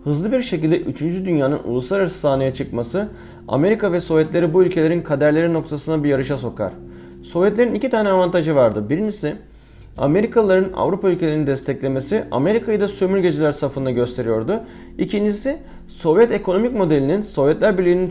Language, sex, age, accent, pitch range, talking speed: Turkish, male, 30-49, native, 140-190 Hz, 130 wpm